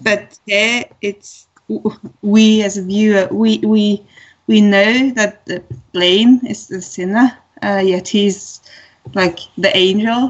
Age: 20-39